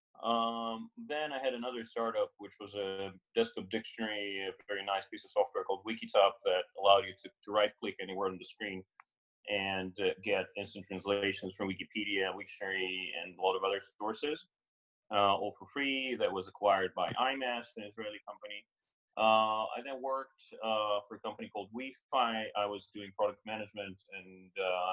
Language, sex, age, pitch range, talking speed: English, male, 30-49, 100-130 Hz, 170 wpm